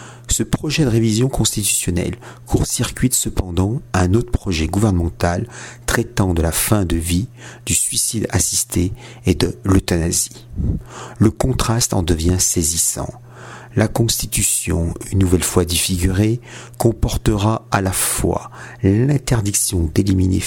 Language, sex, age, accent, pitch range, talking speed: French, male, 50-69, French, 90-120 Hz, 115 wpm